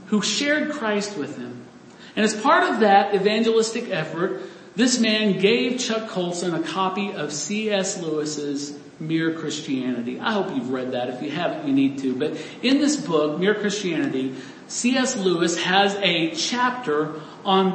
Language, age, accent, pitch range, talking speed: English, 50-69, American, 180-240 Hz, 160 wpm